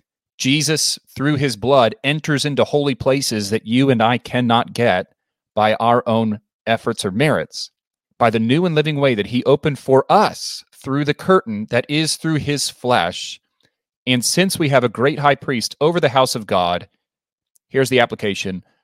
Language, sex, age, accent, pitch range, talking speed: English, male, 30-49, American, 110-140 Hz, 175 wpm